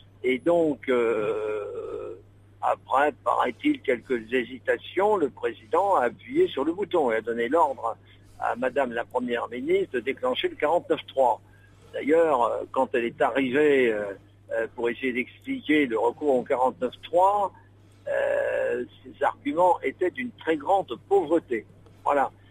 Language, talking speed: French, 130 wpm